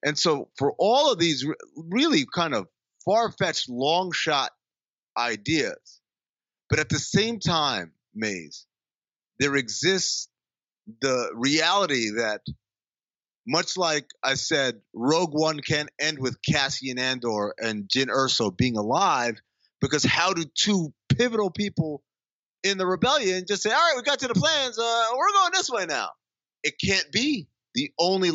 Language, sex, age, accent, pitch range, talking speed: English, male, 30-49, American, 130-205 Hz, 150 wpm